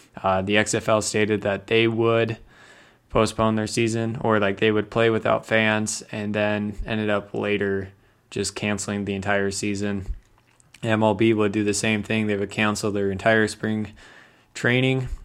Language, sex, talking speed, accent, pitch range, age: English, male, 155 wpm, American, 100-110 Hz, 20-39